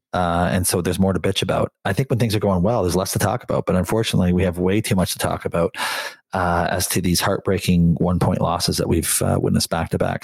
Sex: male